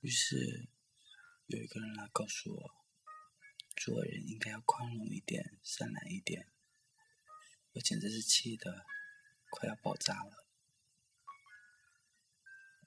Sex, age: male, 20-39